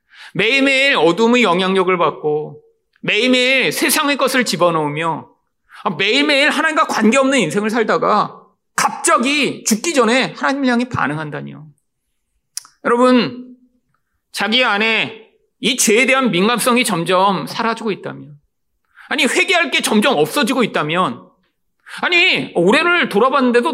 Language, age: Korean, 40-59